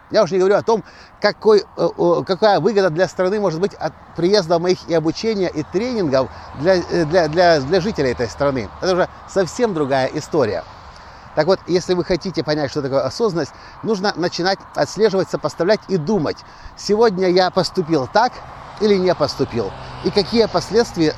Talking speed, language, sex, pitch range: 160 wpm, Russian, male, 155-205 Hz